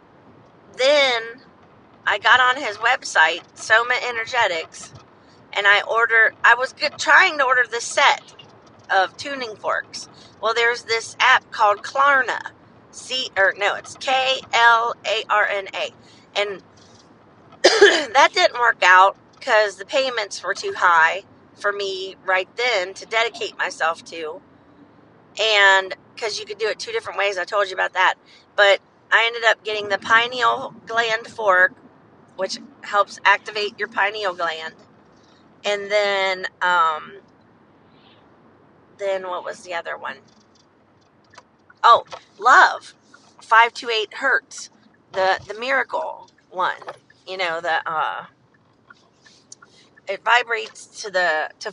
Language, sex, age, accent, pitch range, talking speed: English, female, 40-59, American, 200-255 Hz, 125 wpm